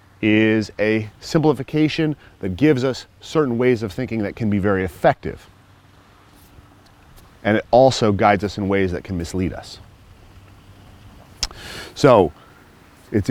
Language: English